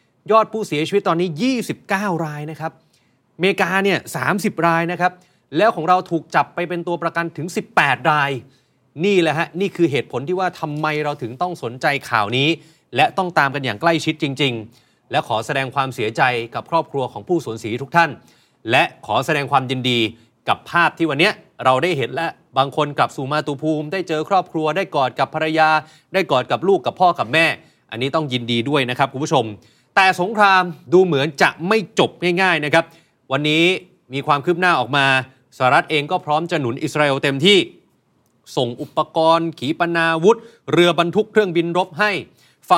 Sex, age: male, 30-49